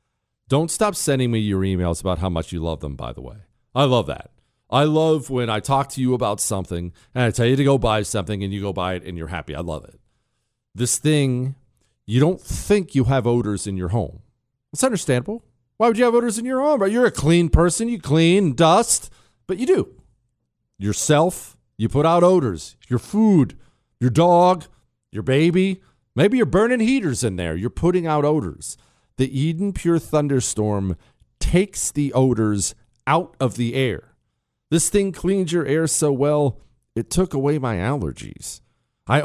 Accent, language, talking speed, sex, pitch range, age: American, English, 185 wpm, male, 110-165 Hz, 40-59